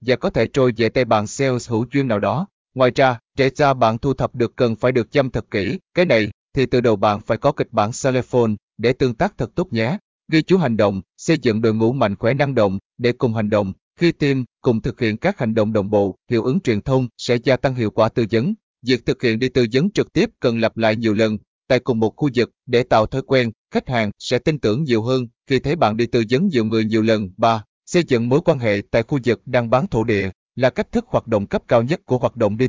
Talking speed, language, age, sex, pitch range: 265 wpm, Vietnamese, 20-39, male, 110-135 Hz